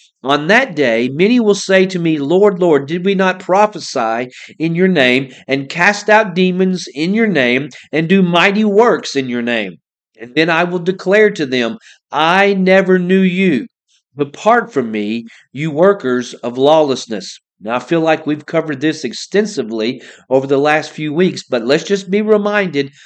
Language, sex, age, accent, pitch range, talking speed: English, male, 50-69, American, 140-200 Hz, 175 wpm